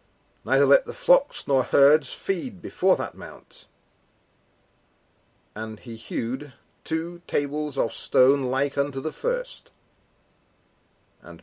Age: 40-59